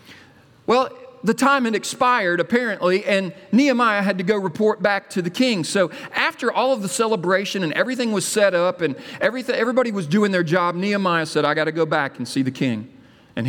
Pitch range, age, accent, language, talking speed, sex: 135-200 Hz, 40-59, American, English, 205 wpm, male